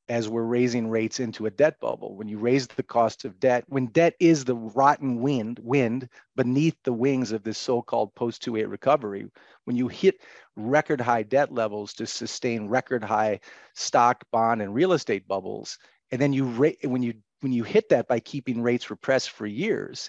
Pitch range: 110-130 Hz